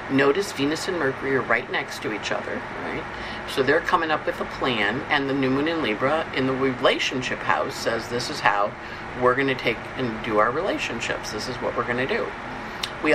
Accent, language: American, English